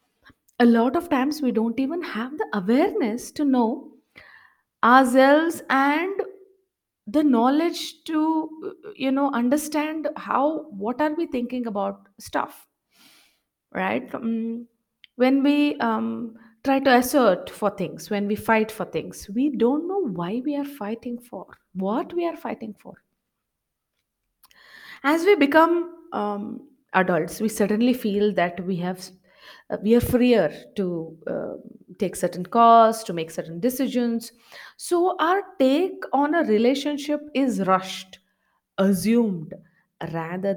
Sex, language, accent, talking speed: female, English, Indian, 130 wpm